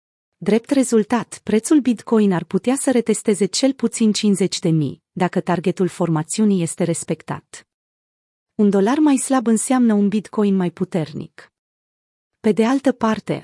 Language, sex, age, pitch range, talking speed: Romanian, female, 30-49, 175-225 Hz, 130 wpm